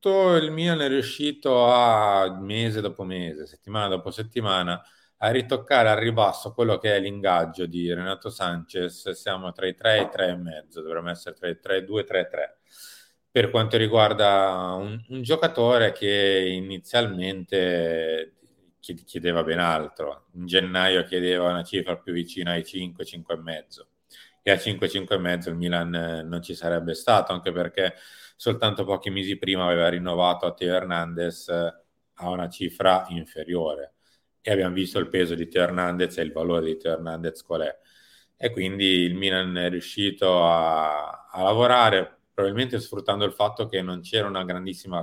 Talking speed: 160 wpm